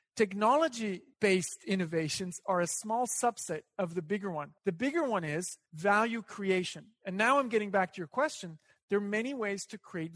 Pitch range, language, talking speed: 190-230 Hz, English, 175 wpm